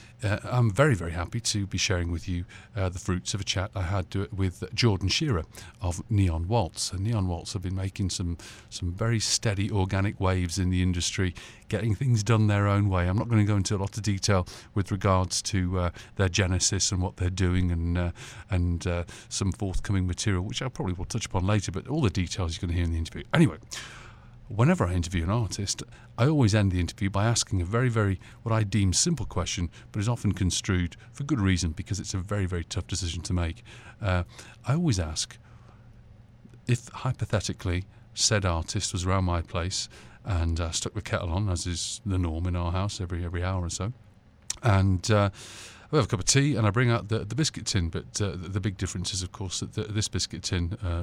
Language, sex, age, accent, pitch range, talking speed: English, male, 40-59, British, 90-115 Hz, 220 wpm